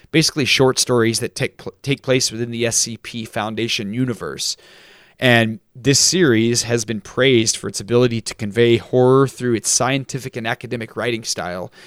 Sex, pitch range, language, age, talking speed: male, 110-130 Hz, English, 30-49, 160 wpm